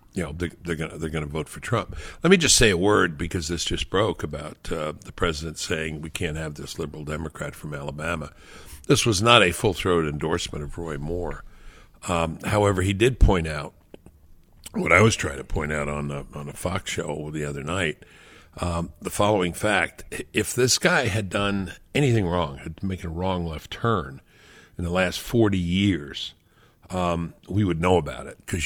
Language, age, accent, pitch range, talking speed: English, 60-79, American, 80-100 Hz, 195 wpm